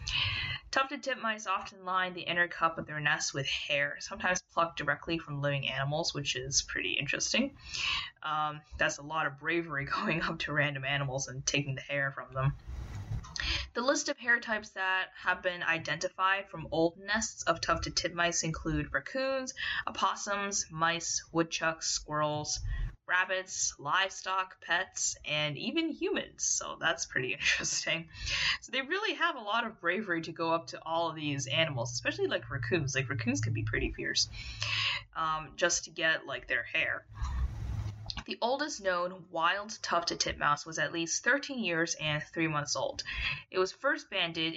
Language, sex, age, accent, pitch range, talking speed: English, female, 10-29, American, 145-185 Hz, 165 wpm